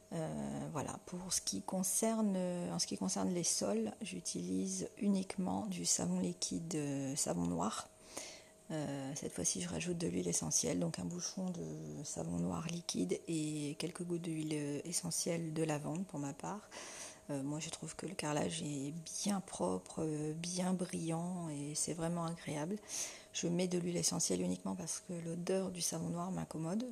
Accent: French